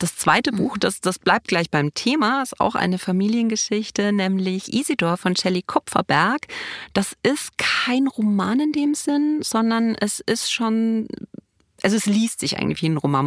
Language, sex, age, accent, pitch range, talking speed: German, female, 30-49, German, 175-210 Hz, 165 wpm